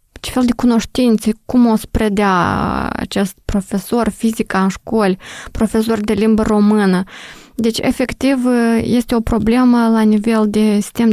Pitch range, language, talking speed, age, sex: 200-230 Hz, Romanian, 135 wpm, 20-39, female